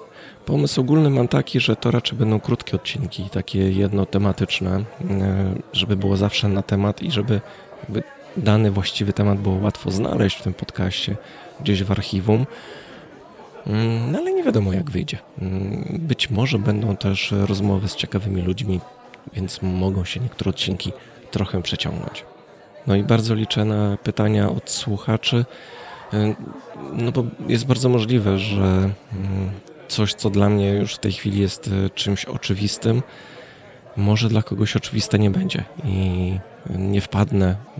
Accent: native